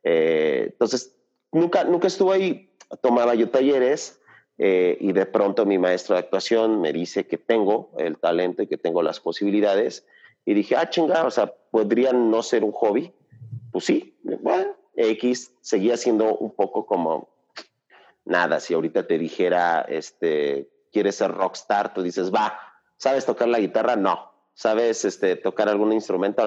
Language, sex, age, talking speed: Spanish, male, 40-59, 160 wpm